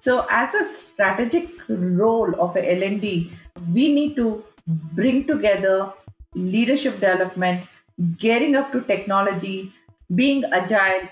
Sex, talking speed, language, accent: female, 115 wpm, English, Indian